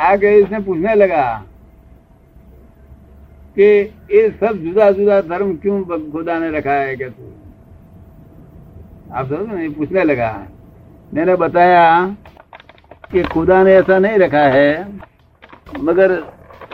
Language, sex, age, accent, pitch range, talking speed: Hindi, male, 60-79, native, 135-195 Hz, 105 wpm